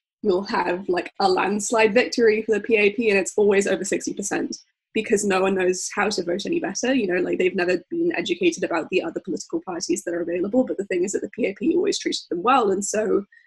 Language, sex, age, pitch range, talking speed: English, female, 10-29, 195-310 Hz, 225 wpm